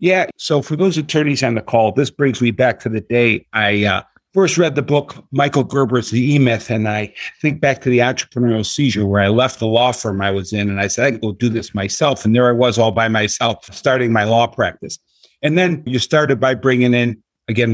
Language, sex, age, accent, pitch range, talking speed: English, male, 50-69, American, 110-140 Hz, 235 wpm